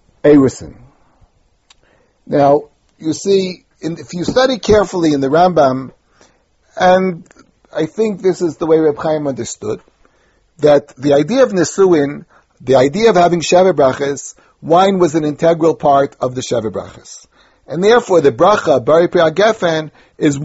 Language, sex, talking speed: English, male, 140 wpm